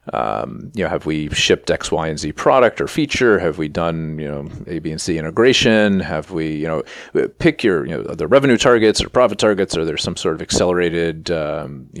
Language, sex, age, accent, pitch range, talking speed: English, male, 30-49, American, 80-90 Hz, 220 wpm